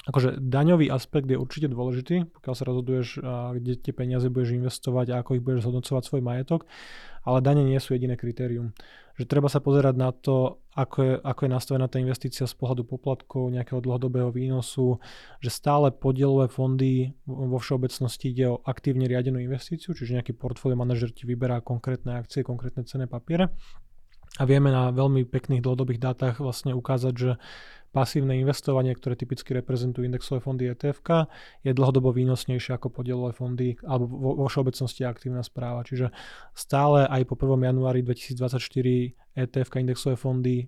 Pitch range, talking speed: 125-135 Hz, 160 wpm